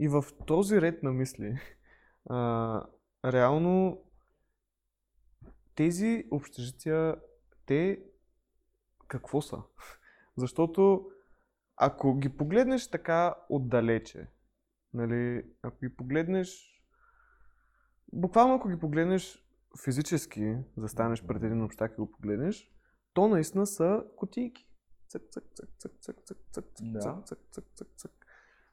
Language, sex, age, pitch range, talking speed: Bulgarian, male, 20-39, 120-190 Hz, 80 wpm